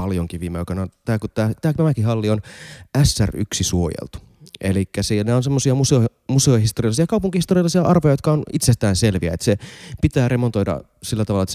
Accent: native